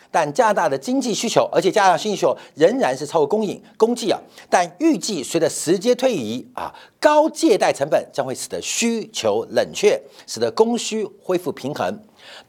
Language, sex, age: Chinese, male, 50-69